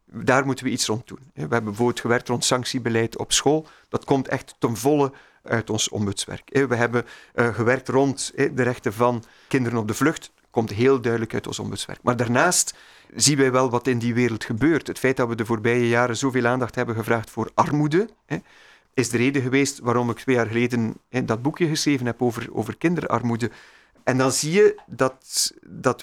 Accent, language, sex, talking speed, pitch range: Belgian, Dutch, male, 195 wpm, 115-140 Hz